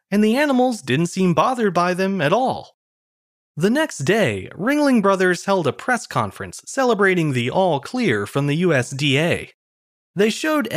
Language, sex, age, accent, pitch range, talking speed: English, male, 30-49, American, 140-235 Hz, 150 wpm